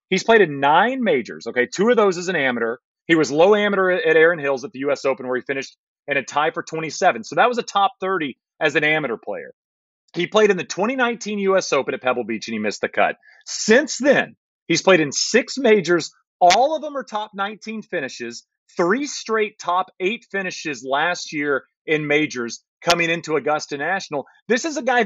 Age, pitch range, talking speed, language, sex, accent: 30-49, 150-205 Hz, 210 wpm, English, male, American